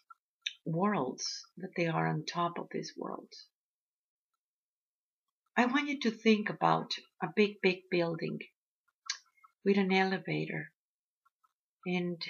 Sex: female